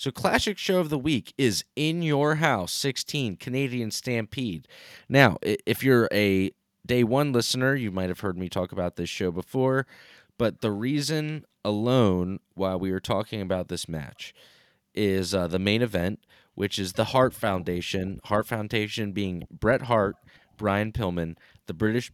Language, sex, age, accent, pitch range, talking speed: English, male, 20-39, American, 100-130 Hz, 165 wpm